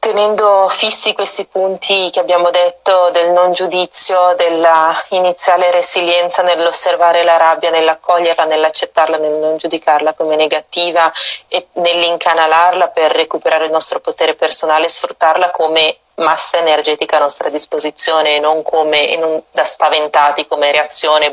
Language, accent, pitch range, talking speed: Italian, native, 150-175 Hz, 125 wpm